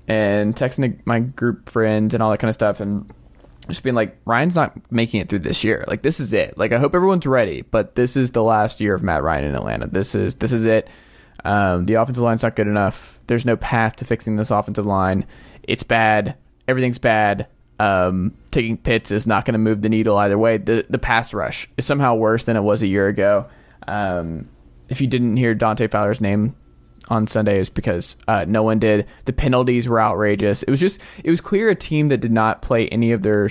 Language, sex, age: English, male, 20-39